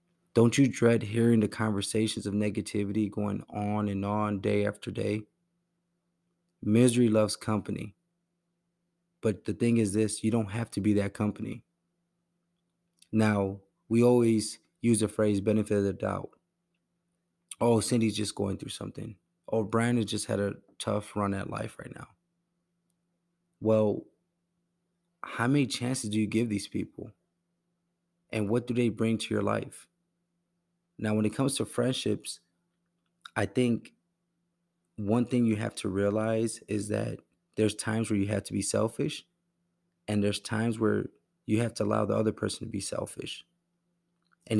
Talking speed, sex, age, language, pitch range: 155 wpm, male, 20-39, English, 105-135 Hz